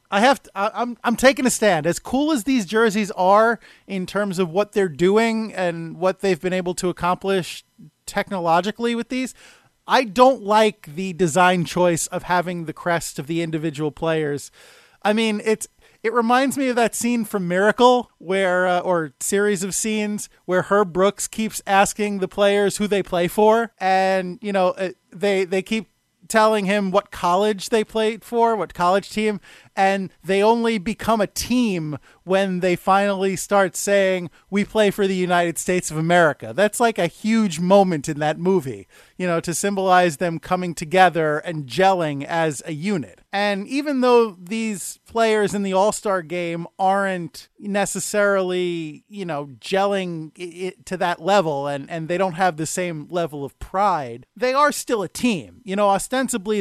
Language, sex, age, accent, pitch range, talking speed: English, male, 30-49, American, 175-210 Hz, 170 wpm